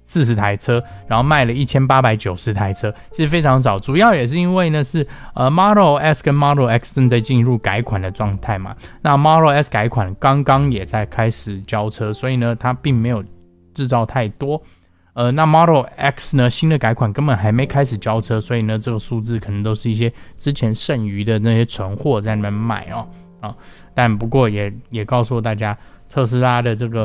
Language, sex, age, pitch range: Chinese, male, 20-39, 105-130 Hz